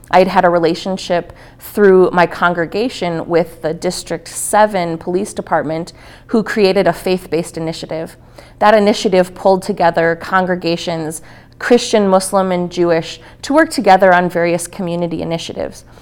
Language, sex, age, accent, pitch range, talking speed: English, female, 30-49, American, 165-190 Hz, 125 wpm